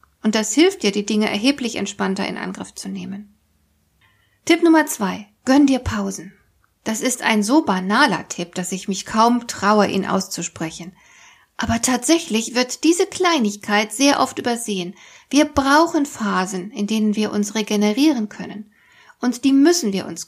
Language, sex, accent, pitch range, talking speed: German, female, German, 205-275 Hz, 155 wpm